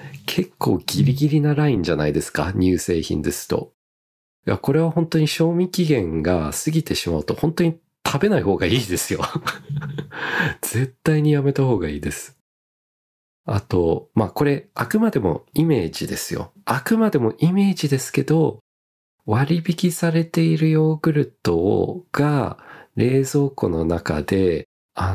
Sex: male